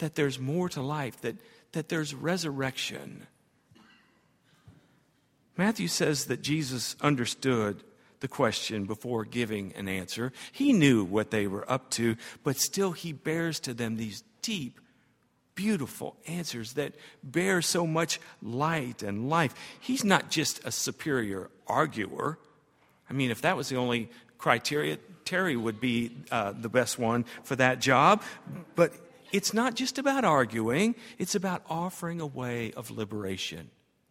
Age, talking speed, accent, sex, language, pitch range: 50-69, 145 wpm, American, male, English, 120-170 Hz